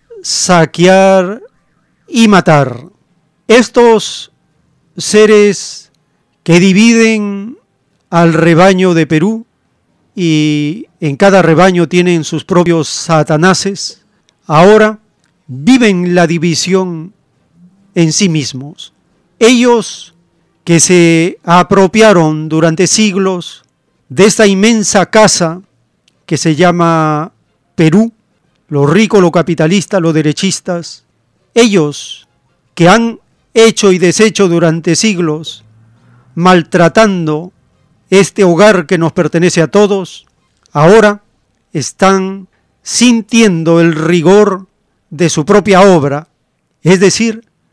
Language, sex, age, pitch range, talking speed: Spanish, male, 40-59, 165-205 Hz, 90 wpm